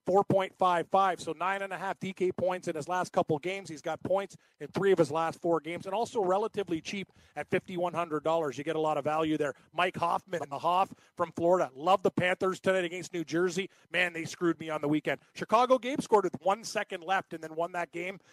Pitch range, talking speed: 170-200 Hz, 225 wpm